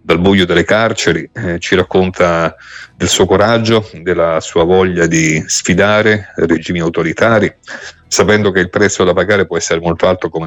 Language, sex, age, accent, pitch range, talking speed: Italian, male, 40-59, native, 85-105 Hz, 160 wpm